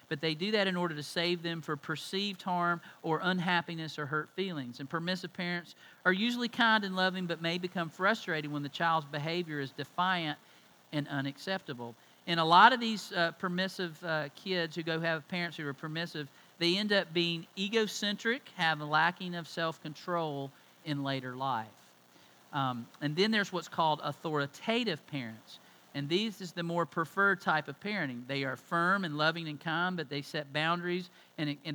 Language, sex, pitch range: English, male, 150-180 Hz